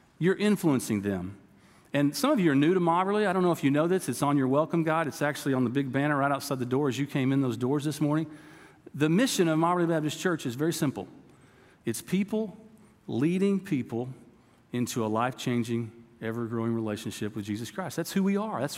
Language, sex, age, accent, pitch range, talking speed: English, male, 40-59, American, 135-175 Hz, 215 wpm